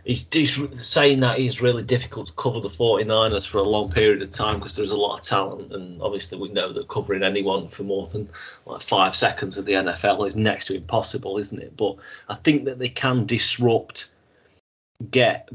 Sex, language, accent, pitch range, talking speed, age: male, English, British, 100-120 Hz, 205 wpm, 30-49